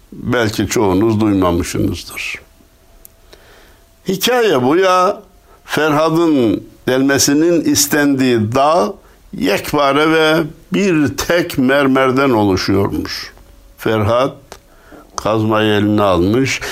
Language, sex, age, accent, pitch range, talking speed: Turkish, male, 60-79, native, 110-145 Hz, 70 wpm